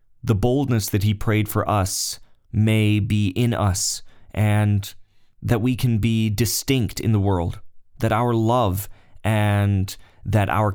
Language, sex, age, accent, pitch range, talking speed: English, male, 30-49, American, 100-110 Hz, 145 wpm